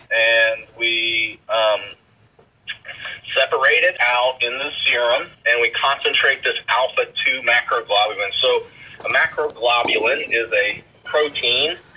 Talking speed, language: 110 wpm, English